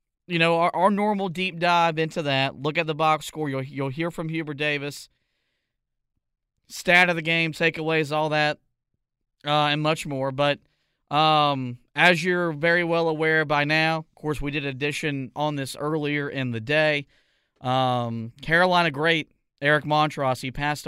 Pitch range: 135-160 Hz